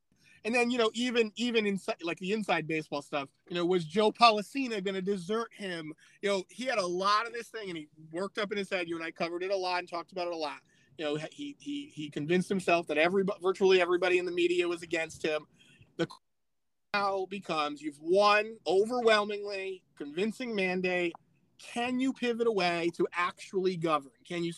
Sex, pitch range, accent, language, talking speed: male, 160-205 Hz, American, English, 205 wpm